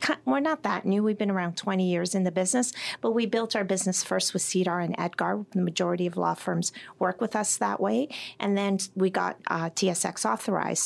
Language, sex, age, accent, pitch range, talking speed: English, female, 40-59, American, 175-215 Hz, 215 wpm